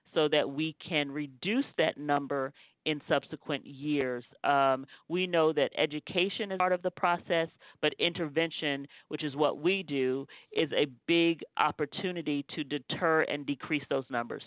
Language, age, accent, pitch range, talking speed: English, 40-59, American, 140-170 Hz, 155 wpm